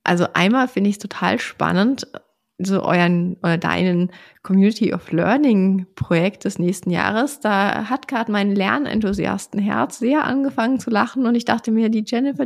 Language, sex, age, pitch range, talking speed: German, female, 30-49, 195-250 Hz, 160 wpm